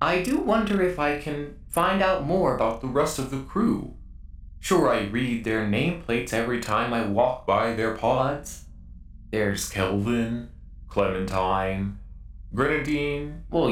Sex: male